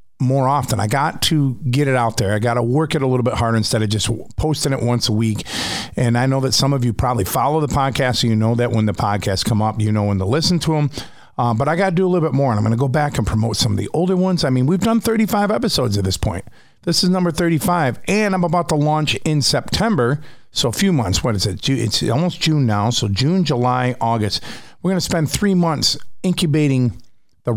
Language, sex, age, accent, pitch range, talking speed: English, male, 50-69, American, 115-150 Hz, 260 wpm